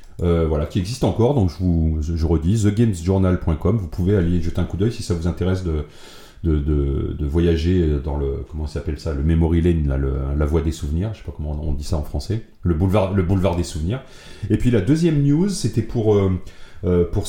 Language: French